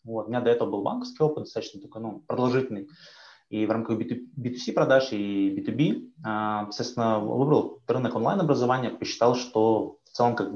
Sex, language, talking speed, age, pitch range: male, Russian, 165 wpm, 20-39, 105-130 Hz